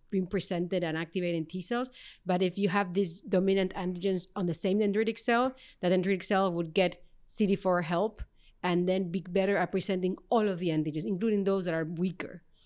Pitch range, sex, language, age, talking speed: 170-200 Hz, female, English, 30-49, 190 wpm